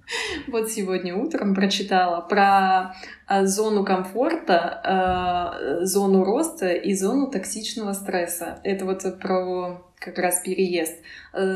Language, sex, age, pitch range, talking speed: Russian, female, 20-39, 180-210 Hz, 100 wpm